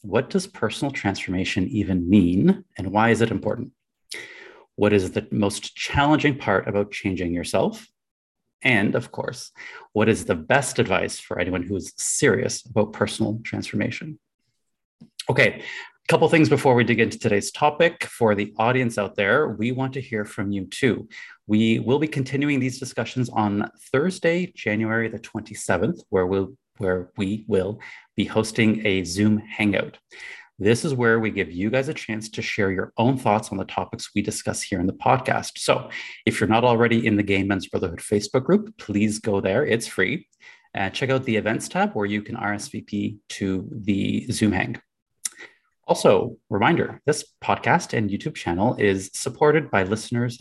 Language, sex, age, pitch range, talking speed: English, male, 30-49, 100-130 Hz, 175 wpm